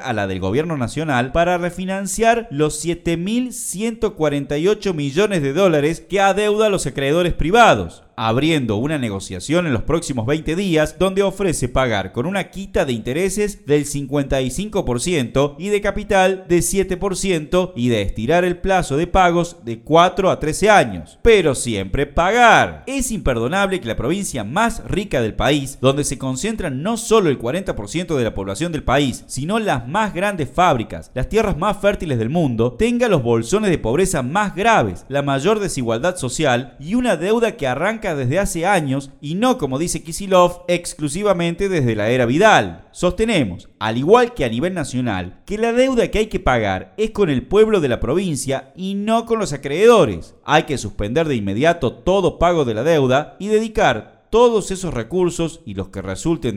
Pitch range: 130-195 Hz